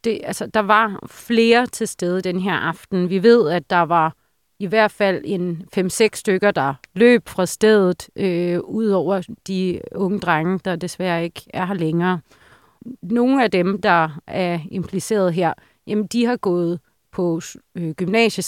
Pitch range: 175-215 Hz